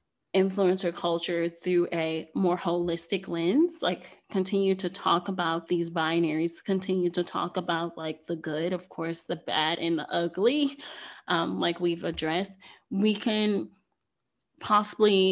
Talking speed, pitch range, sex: 135 wpm, 175-205 Hz, female